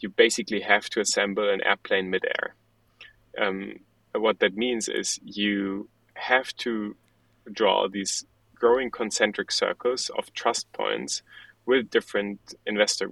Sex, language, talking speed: male, English, 120 wpm